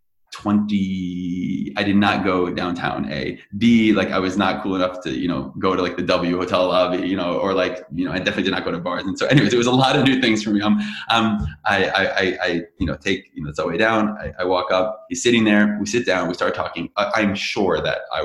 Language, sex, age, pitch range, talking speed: English, male, 20-39, 90-105 Hz, 255 wpm